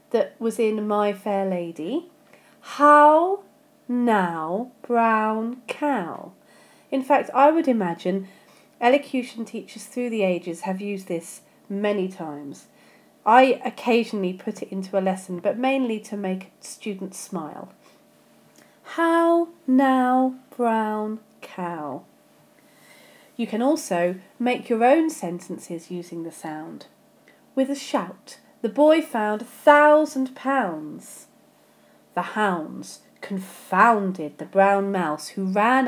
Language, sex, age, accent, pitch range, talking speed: English, female, 40-59, British, 180-270 Hz, 115 wpm